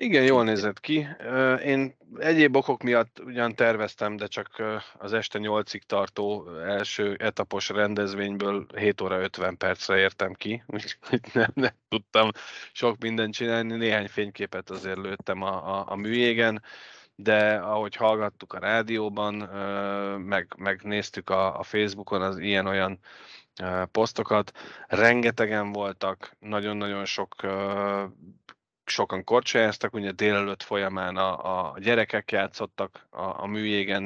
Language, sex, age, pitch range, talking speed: Hungarian, male, 20-39, 100-115 Hz, 125 wpm